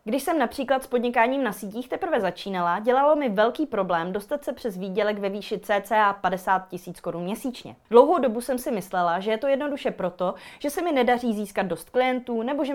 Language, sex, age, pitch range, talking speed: Czech, female, 30-49, 195-255 Hz, 200 wpm